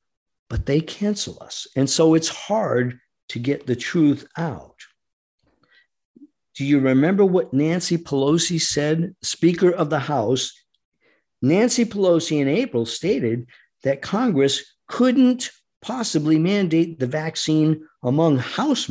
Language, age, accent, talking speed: English, 50-69, American, 120 wpm